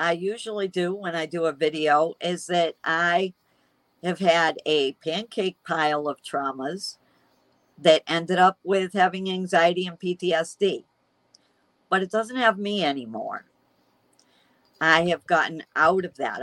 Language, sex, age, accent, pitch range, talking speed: English, female, 50-69, American, 155-195 Hz, 140 wpm